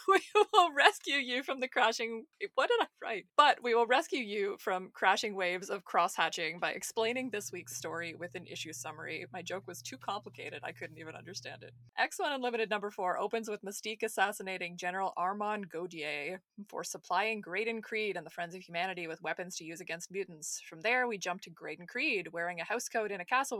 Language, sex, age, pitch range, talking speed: English, female, 20-39, 180-230 Hz, 205 wpm